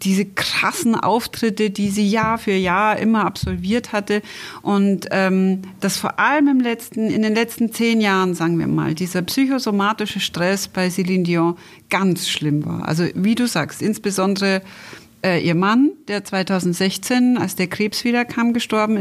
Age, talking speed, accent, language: 40-59, 160 wpm, German, German